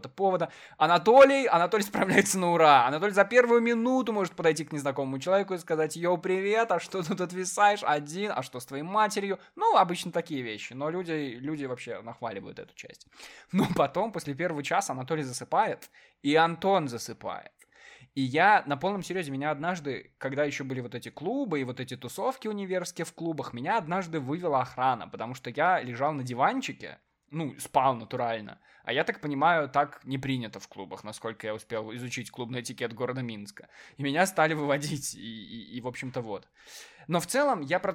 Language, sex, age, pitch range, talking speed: Russian, male, 20-39, 130-185 Hz, 180 wpm